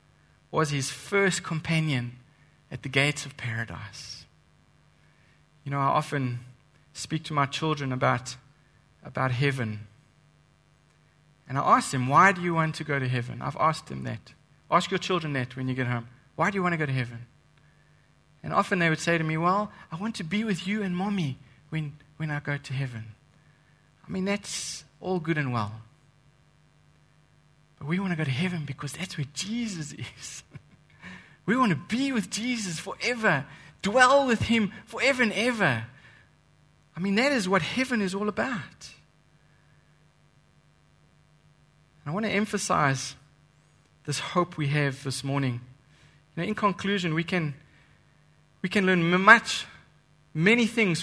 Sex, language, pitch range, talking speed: male, English, 140-185 Hz, 160 wpm